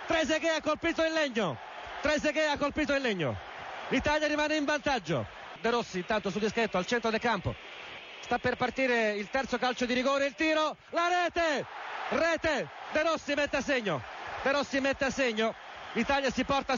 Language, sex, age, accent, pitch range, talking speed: Italian, male, 40-59, native, 220-285 Hz, 175 wpm